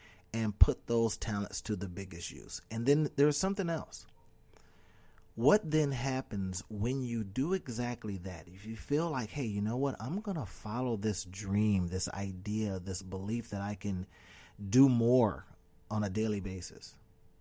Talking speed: 165 wpm